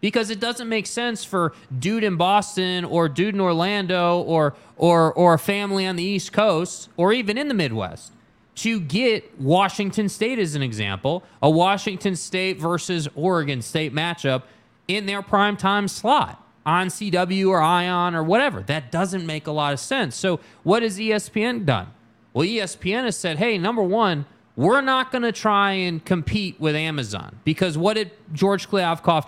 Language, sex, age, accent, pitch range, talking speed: English, male, 30-49, American, 160-215 Hz, 170 wpm